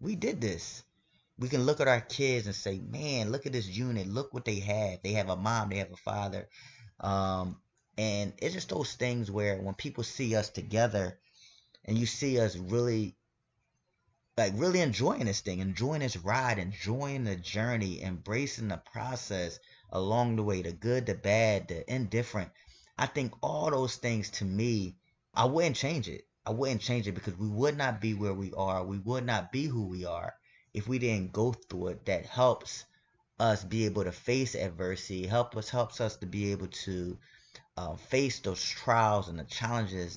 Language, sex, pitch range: English, male, 95-120 Hz